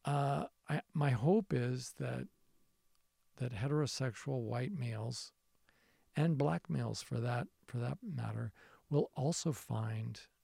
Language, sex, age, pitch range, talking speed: English, male, 50-69, 110-135 Hz, 120 wpm